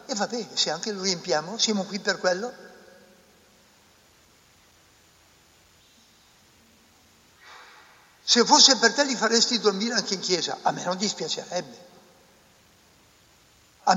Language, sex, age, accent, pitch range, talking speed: Italian, male, 60-79, native, 150-205 Hz, 110 wpm